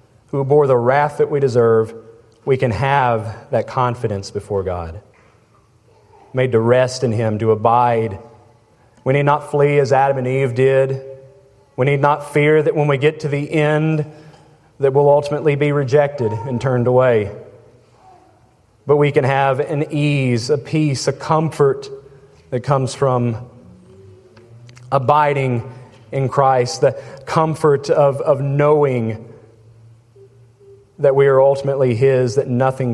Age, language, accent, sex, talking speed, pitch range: 30-49, English, American, male, 140 wpm, 115-140 Hz